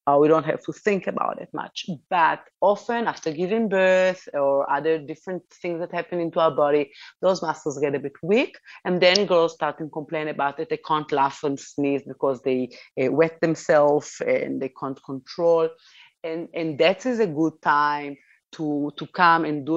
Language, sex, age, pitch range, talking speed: English, female, 30-49, 140-170 Hz, 185 wpm